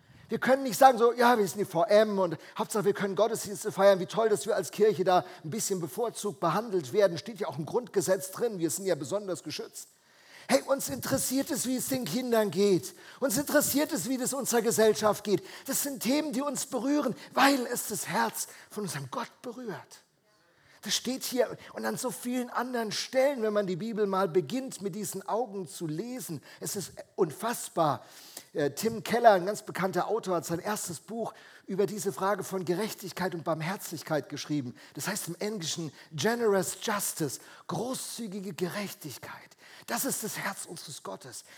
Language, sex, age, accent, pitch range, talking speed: German, male, 50-69, German, 180-235 Hz, 180 wpm